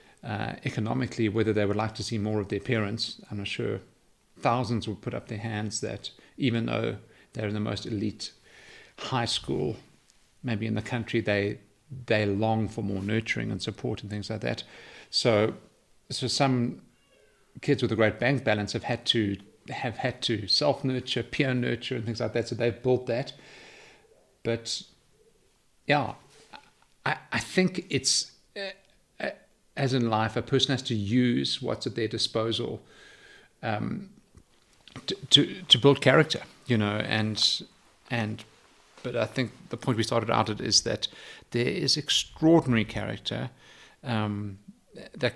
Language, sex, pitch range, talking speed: English, male, 110-130 Hz, 155 wpm